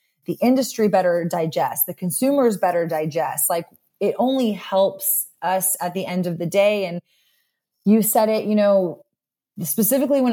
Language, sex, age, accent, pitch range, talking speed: English, female, 20-39, American, 175-230 Hz, 155 wpm